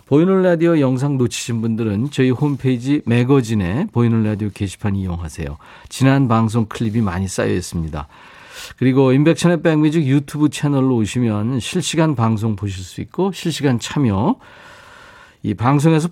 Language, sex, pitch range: Korean, male, 105-140 Hz